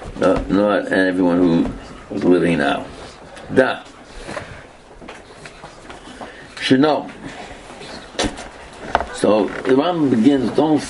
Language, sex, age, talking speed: English, male, 60-79, 90 wpm